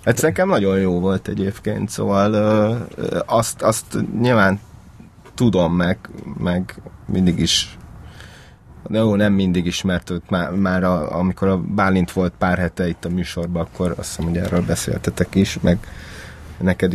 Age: 30-49